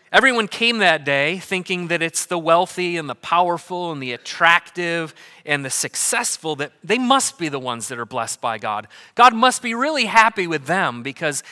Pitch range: 140-185 Hz